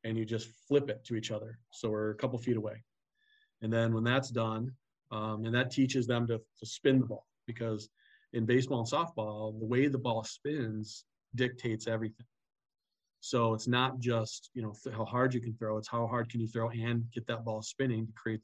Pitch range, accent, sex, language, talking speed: 110-120 Hz, American, male, English, 210 wpm